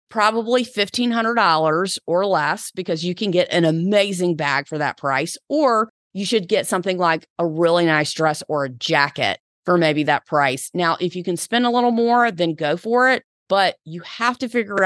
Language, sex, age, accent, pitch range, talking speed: English, female, 30-49, American, 165-215 Hz, 195 wpm